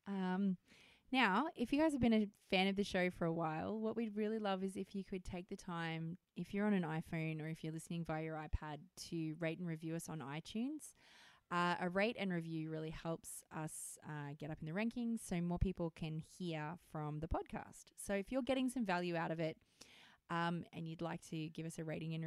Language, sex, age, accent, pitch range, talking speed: English, female, 20-39, Australian, 165-215 Hz, 230 wpm